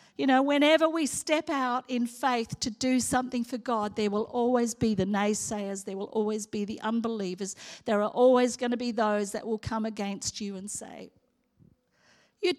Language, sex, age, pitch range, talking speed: English, female, 50-69, 245-305 Hz, 190 wpm